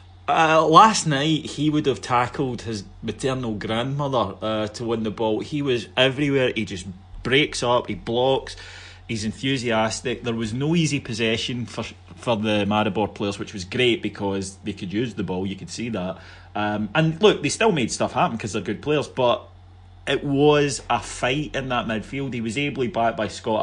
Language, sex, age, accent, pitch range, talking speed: English, male, 30-49, British, 95-120 Hz, 190 wpm